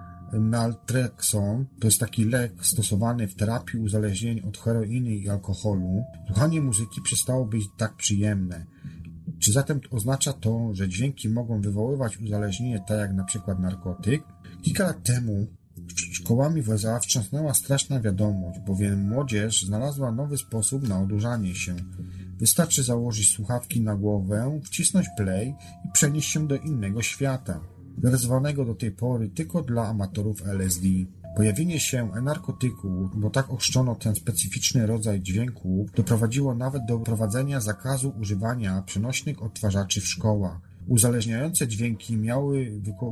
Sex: male